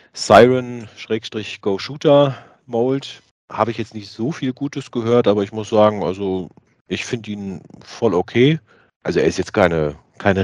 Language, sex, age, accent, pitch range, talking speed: German, male, 30-49, German, 95-115 Hz, 150 wpm